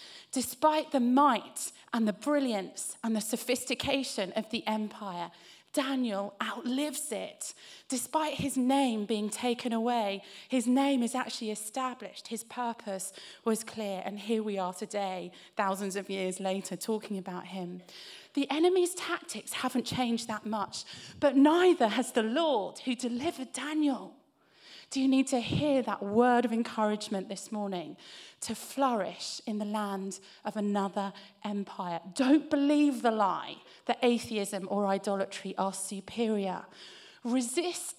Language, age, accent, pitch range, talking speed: English, 30-49, British, 200-255 Hz, 135 wpm